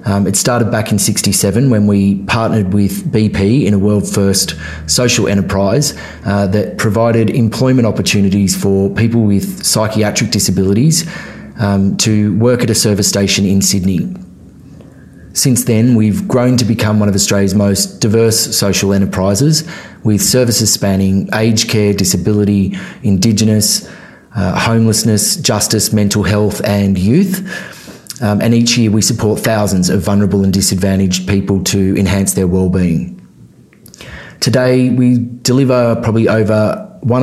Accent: Australian